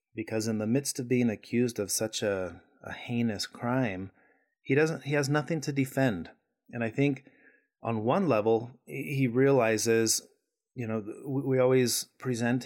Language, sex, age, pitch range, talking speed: English, male, 30-49, 110-130 Hz, 150 wpm